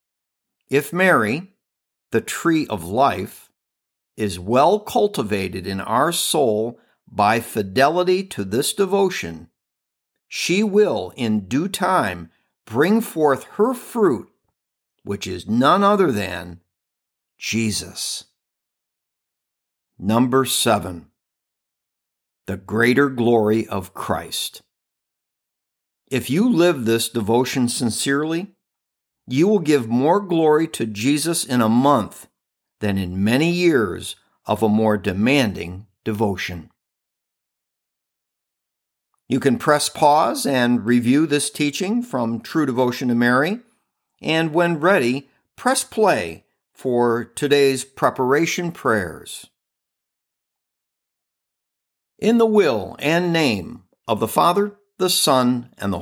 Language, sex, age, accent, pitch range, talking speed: English, male, 50-69, American, 110-175 Hz, 105 wpm